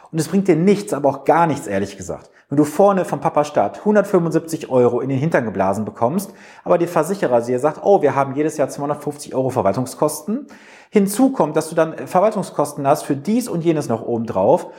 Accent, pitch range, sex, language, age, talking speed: German, 120-170 Hz, male, German, 40-59, 205 wpm